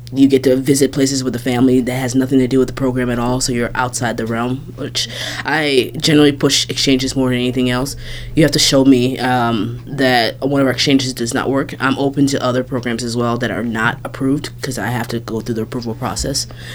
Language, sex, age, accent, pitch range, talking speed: English, female, 20-39, American, 120-135 Hz, 235 wpm